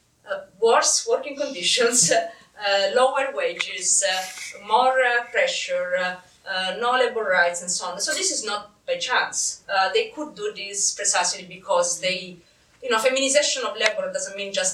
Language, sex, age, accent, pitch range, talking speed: English, female, 30-49, Italian, 180-260 Hz, 165 wpm